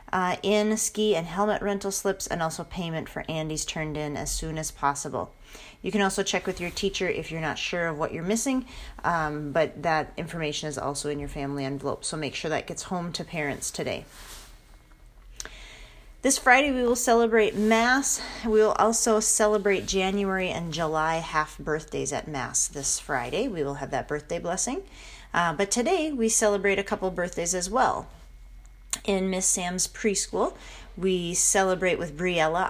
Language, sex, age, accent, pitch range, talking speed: English, female, 30-49, American, 155-210 Hz, 175 wpm